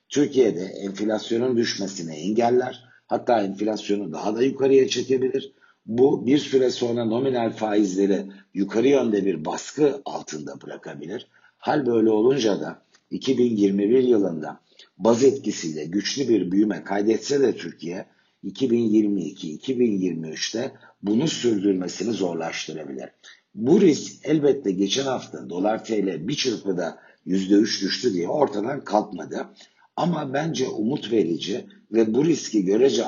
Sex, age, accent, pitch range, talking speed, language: male, 60-79, native, 100-130 Hz, 110 wpm, Turkish